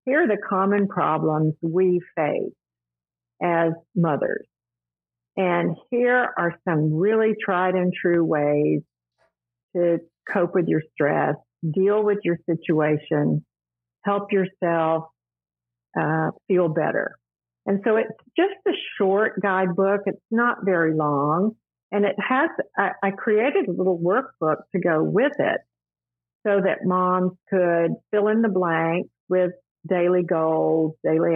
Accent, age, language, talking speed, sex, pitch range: American, 50-69, English, 130 wpm, female, 155-195 Hz